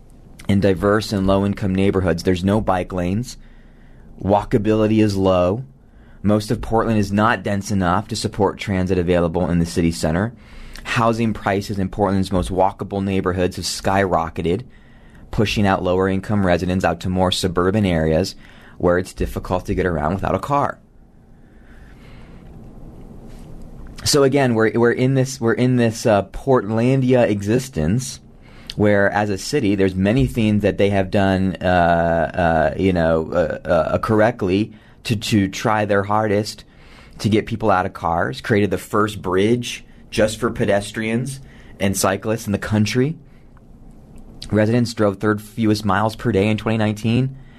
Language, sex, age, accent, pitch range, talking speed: English, male, 30-49, American, 95-110 Hz, 150 wpm